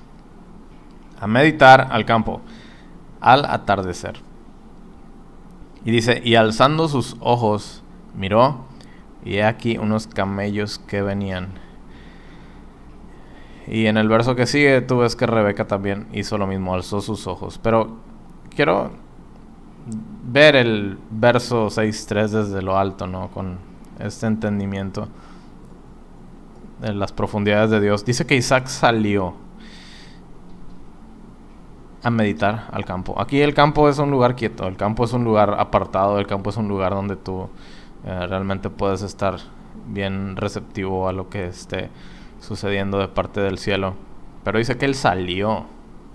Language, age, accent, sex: Spanish, 20-39, Mexican, male